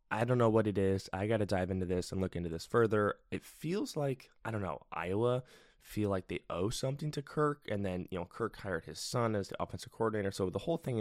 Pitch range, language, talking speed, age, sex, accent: 95-115 Hz, English, 255 wpm, 20-39, male, American